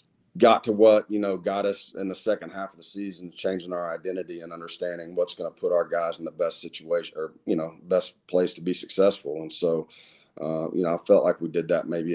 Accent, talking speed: American, 240 wpm